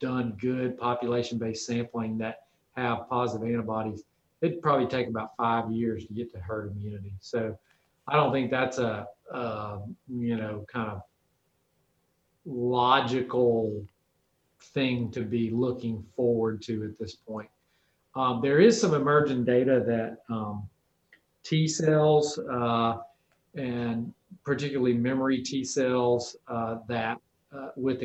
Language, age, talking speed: English, 40-59, 125 wpm